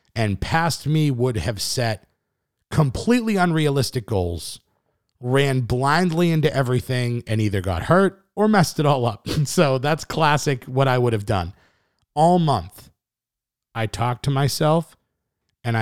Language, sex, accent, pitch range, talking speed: English, male, American, 110-140 Hz, 140 wpm